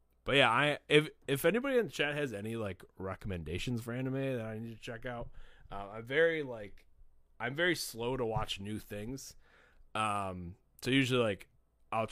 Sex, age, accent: male, 20-39, American